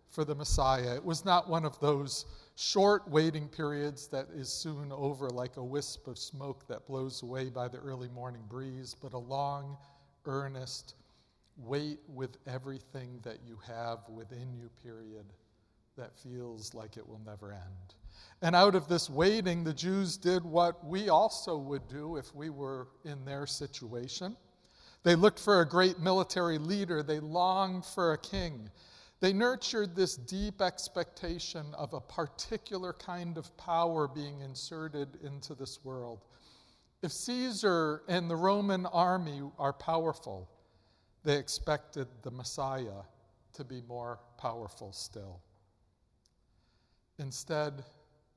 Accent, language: American, English